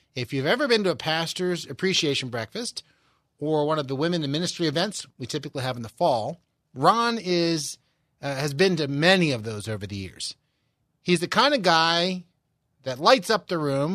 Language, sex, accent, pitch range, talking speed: English, male, American, 140-180 Hz, 195 wpm